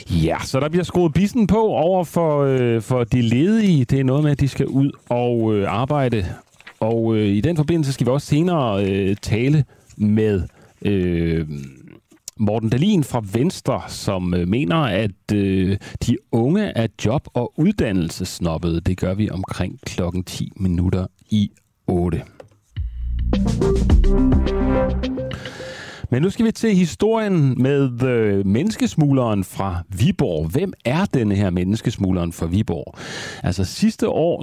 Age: 40-59